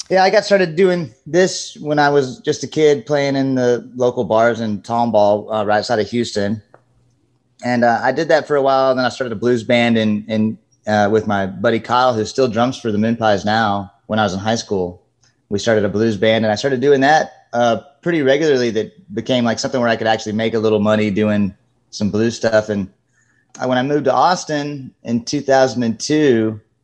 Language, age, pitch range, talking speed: English, 30-49, 105-125 Hz, 210 wpm